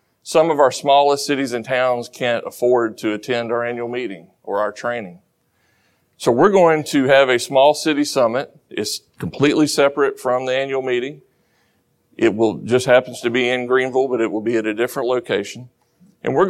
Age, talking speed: 40-59, 185 wpm